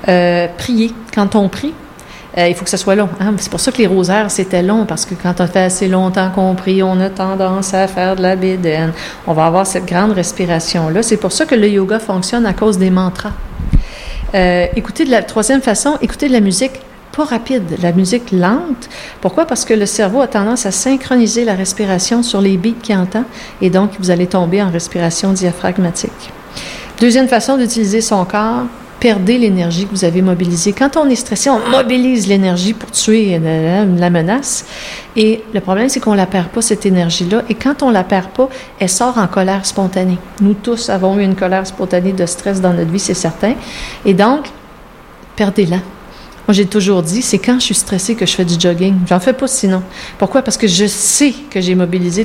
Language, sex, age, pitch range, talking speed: French, female, 40-59, 185-230 Hz, 210 wpm